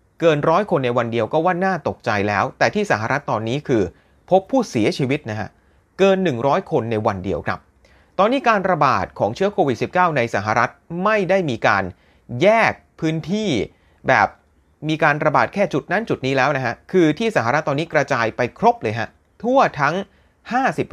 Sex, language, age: male, Thai, 30-49